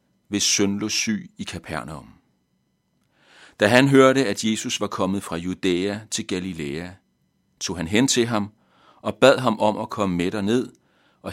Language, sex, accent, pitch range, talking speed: Danish, male, native, 85-115 Hz, 165 wpm